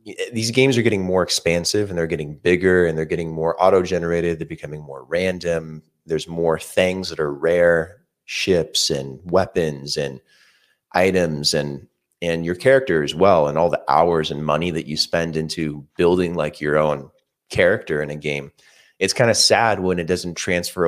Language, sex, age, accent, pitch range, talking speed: English, male, 30-49, American, 80-100 Hz, 180 wpm